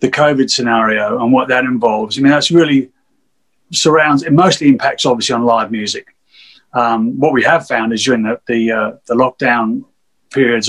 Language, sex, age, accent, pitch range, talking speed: English, male, 30-49, British, 125-155 Hz, 180 wpm